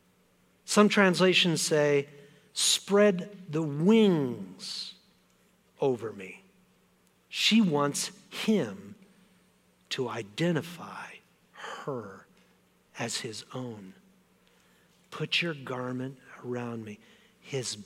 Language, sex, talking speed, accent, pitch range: English, male, 75 wpm, American, 155-215 Hz